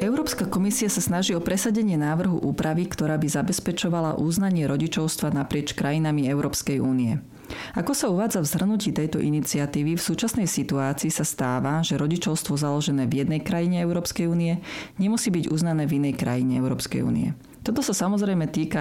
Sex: female